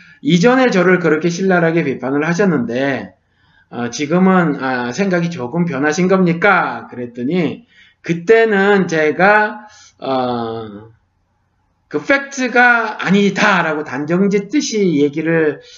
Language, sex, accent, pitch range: Korean, male, native, 145-215 Hz